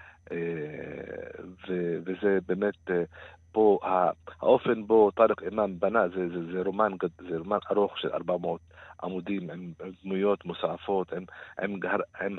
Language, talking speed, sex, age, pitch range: Hebrew, 85 wpm, male, 50-69, 90-110 Hz